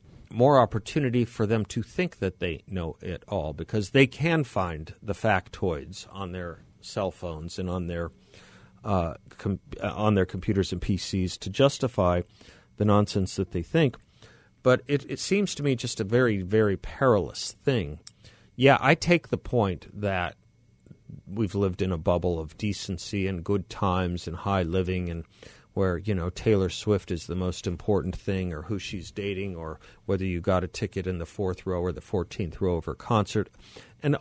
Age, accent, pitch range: 50-69, American, 90-110 Hz